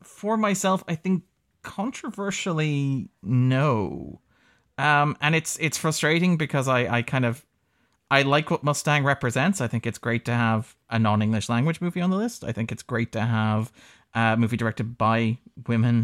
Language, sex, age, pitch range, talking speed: English, male, 30-49, 110-145 Hz, 170 wpm